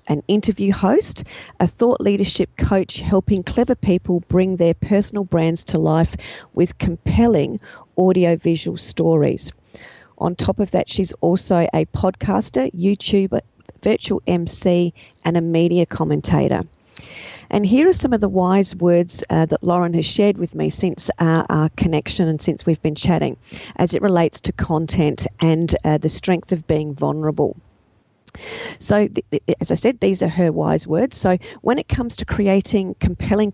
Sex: female